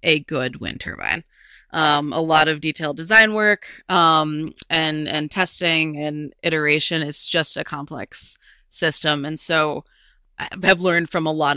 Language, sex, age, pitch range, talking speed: English, female, 20-39, 150-165 Hz, 155 wpm